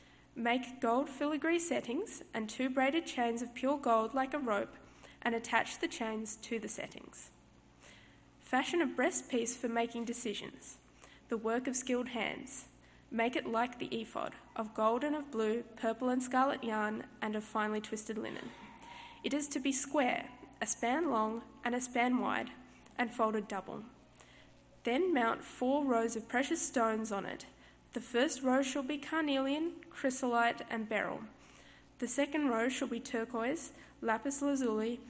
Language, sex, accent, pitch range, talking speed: English, female, Australian, 225-270 Hz, 160 wpm